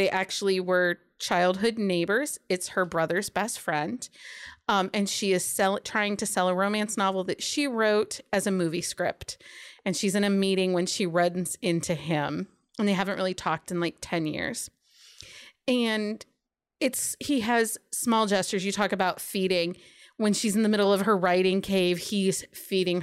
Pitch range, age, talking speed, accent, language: 185-220 Hz, 30-49, 175 wpm, American, English